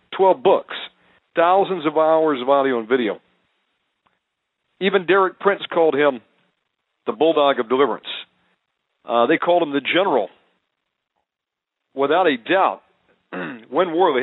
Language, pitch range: English, 140-180 Hz